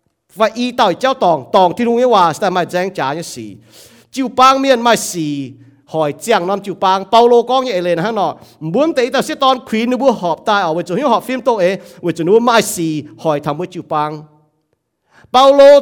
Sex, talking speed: male, 200 wpm